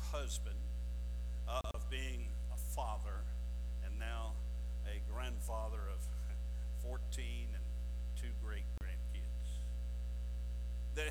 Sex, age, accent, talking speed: male, 60-79, American, 85 wpm